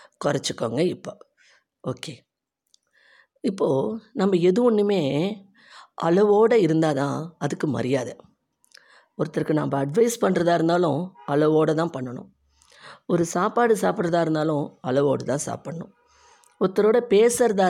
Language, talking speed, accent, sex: Tamil, 100 wpm, native, female